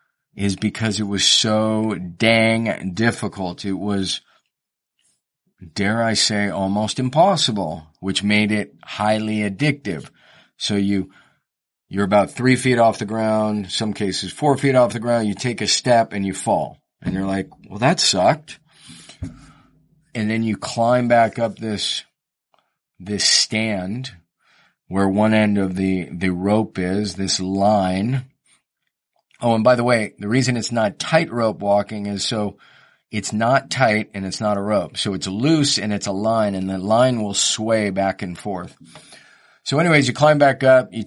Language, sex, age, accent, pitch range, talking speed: English, male, 40-59, American, 100-120 Hz, 160 wpm